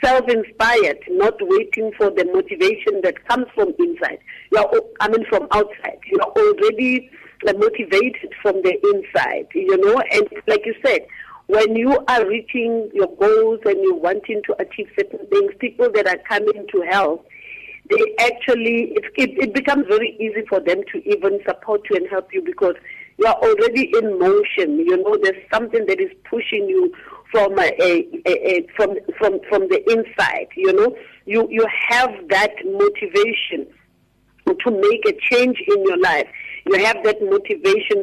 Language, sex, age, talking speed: English, female, 50-69, 165 wpm